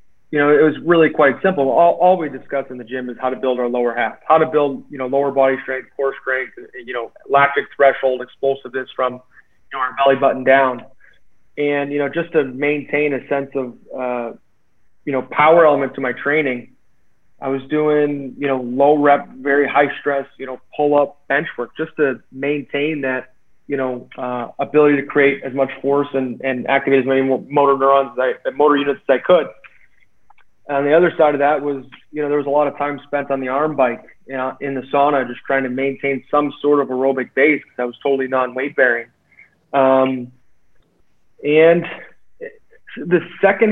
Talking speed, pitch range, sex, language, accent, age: 205 wpm, 130-150 Hz, male, English, American, 30-49